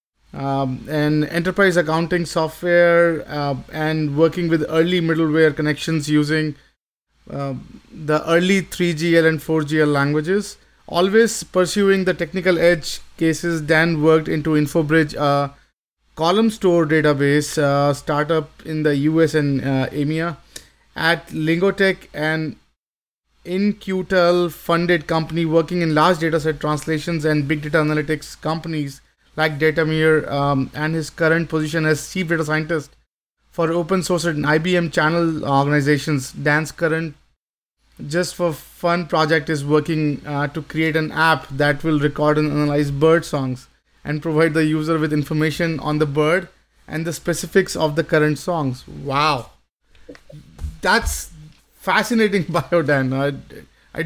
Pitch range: 150-170 Hz